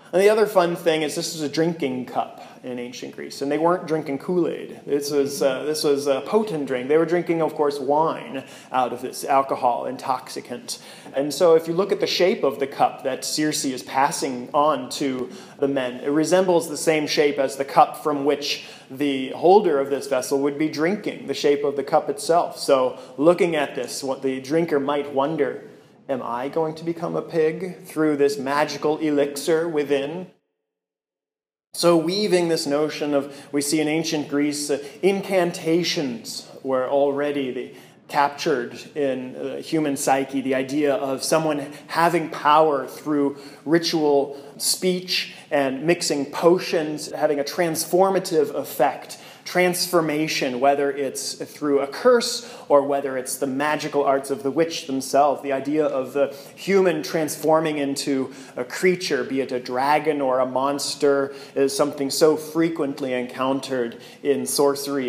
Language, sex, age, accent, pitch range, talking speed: English, male, 30-49, American, 140-160 Hz, 160 wpm